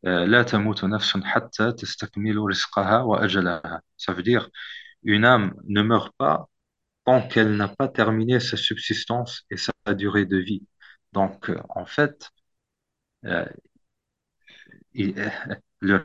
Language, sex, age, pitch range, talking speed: French, male, 40-59, 100-120 Hz, 90 wpm